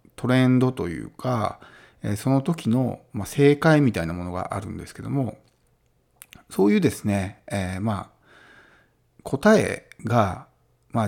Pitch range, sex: 100-140 Hz, male